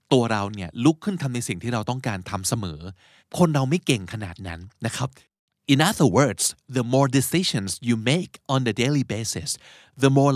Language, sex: Thai, male